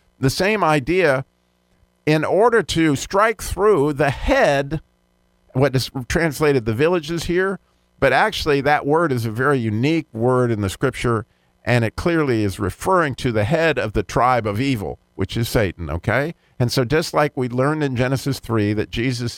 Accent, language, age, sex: American, English, 50-69, male